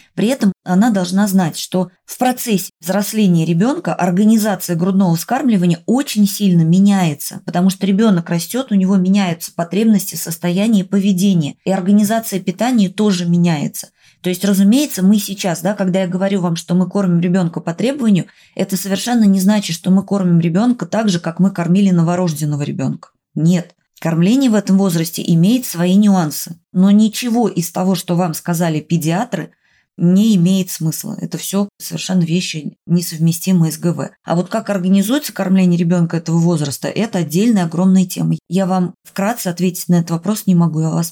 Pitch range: 170-200 Hz